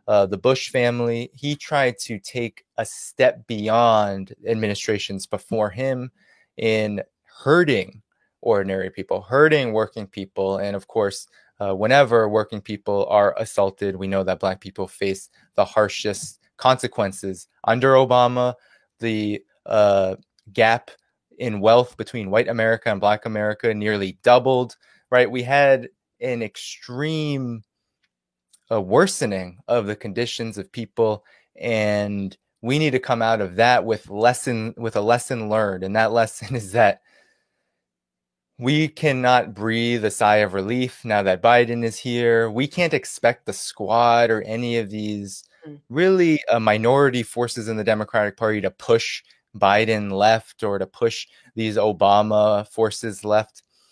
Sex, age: male, 20-39